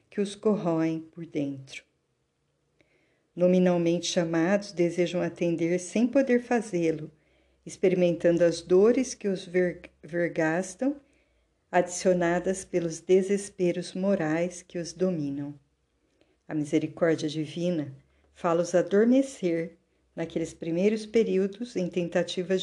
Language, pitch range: Portuguese, 165-195 Hz